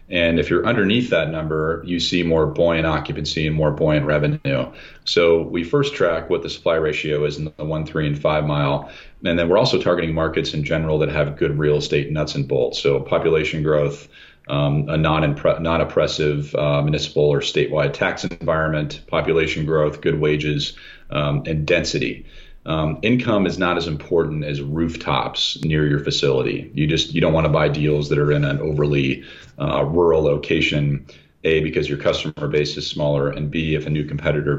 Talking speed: 185 wpm